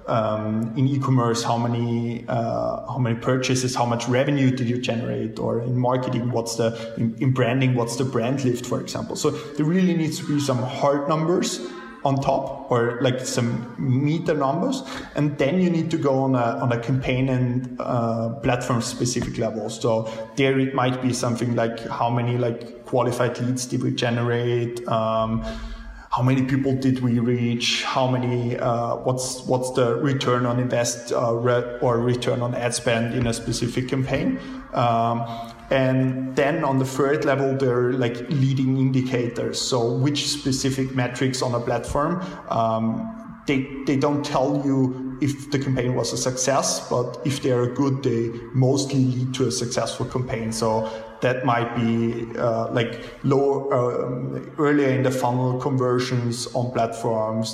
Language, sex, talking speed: English, male, 165 wpm